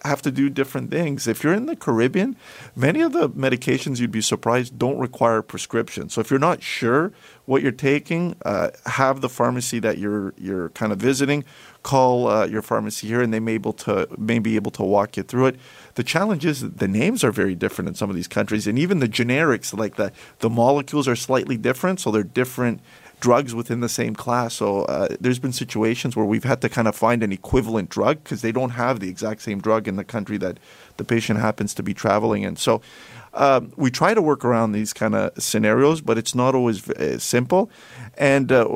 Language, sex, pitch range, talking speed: English, male, 110-130 Hz, 220 wpm